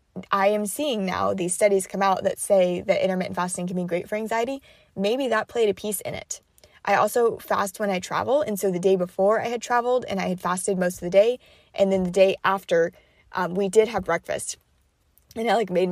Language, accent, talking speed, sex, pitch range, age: English, American, 230 wpm, female, 180-210 Hz, 20-39